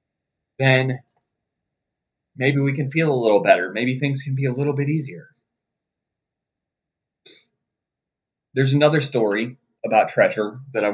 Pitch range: 115-140 Hz